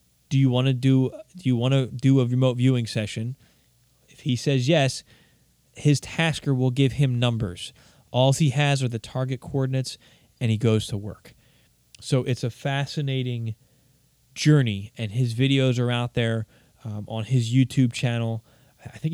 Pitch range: 110-130 Hz